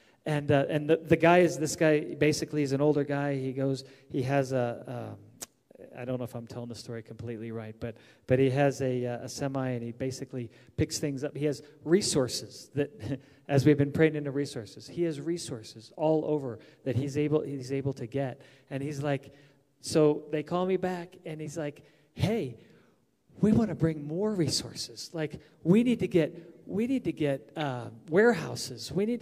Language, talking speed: English, 195 wpm